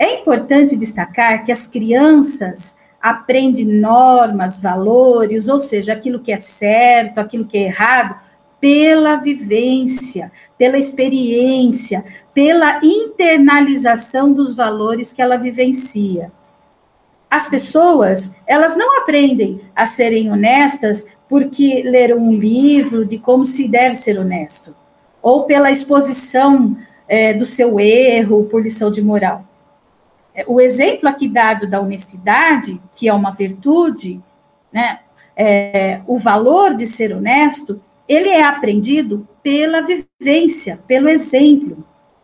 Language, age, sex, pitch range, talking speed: Portuguese, 50-69, female, 210-285 Hz, 115 wpm